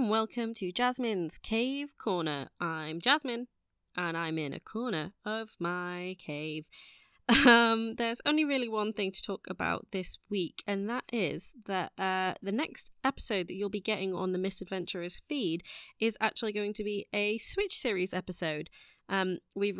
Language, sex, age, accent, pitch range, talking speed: English, female, 20-39, British, 180-225 Hz, 160 wpm